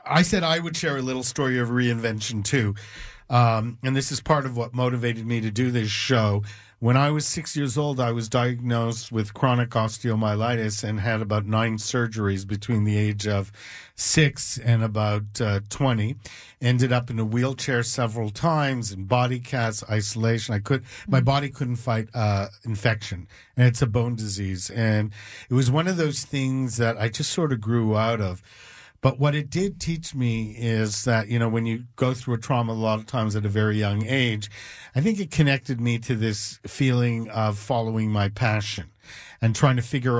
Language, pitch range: English, 110-130 Hz